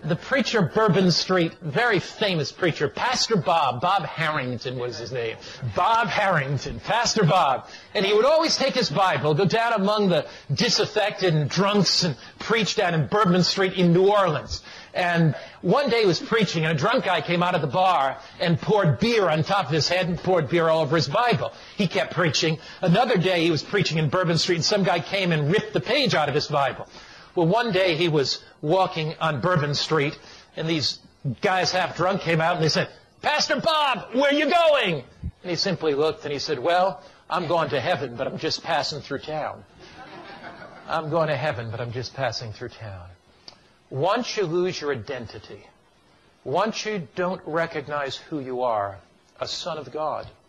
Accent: American